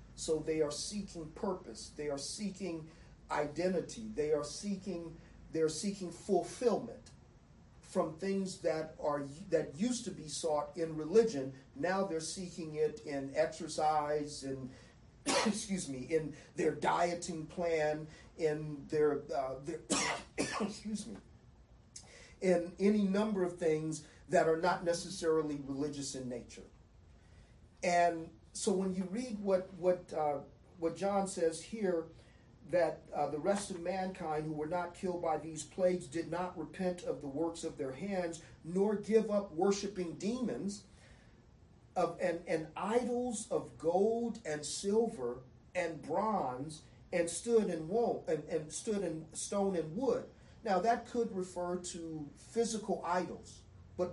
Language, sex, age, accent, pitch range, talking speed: English, male, 40-59, American, 155-195 Hz, 140 wpm